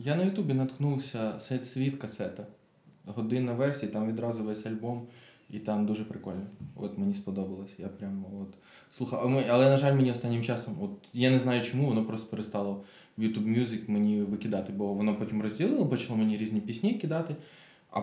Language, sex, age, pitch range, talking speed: Ukrainian, male, 20-39, 110-130 Hz, 175 wpm